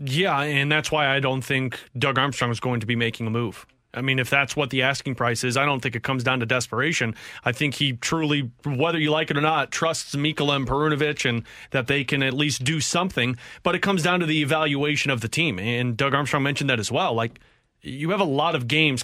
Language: English